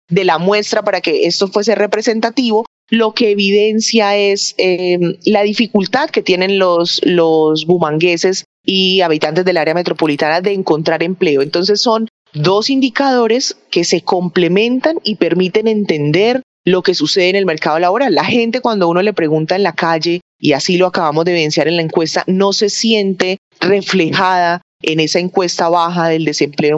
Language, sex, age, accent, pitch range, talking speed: Spanish, female, 30-49, Colombian, 170-205 Hz, 165 wpm